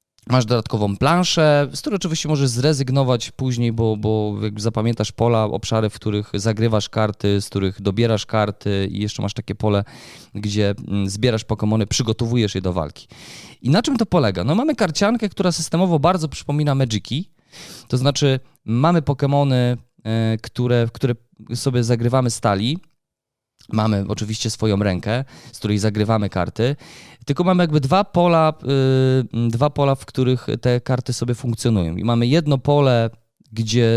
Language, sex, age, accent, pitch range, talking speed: Polish, male, 20-39, native, 110-135 Hz, 150 wpm